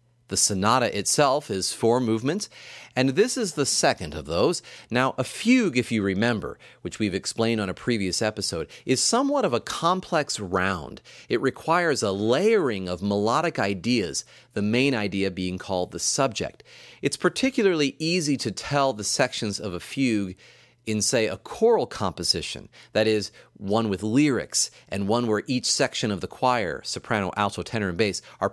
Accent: American